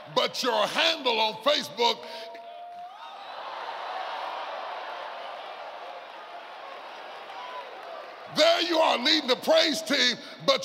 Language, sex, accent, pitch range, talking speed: English, female, American, 245-320 Hz, 75 wpm